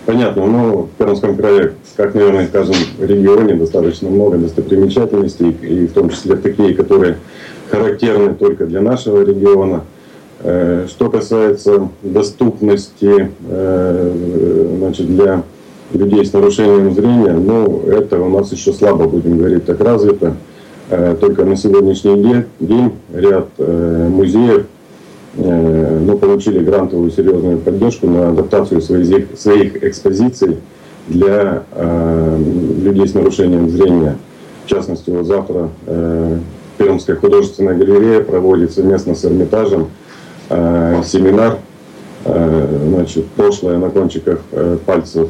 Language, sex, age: Russian, male, 30-49